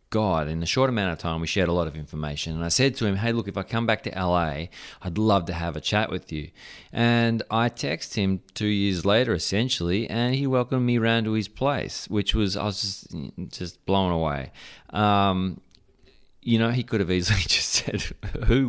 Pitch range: 85-115 Hz